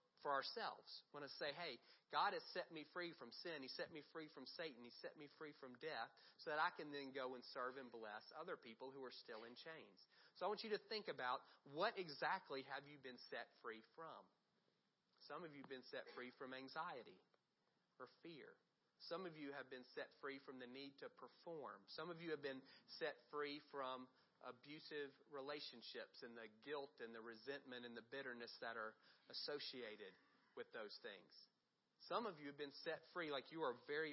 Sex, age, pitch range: male, 40-59, 130-160 Hz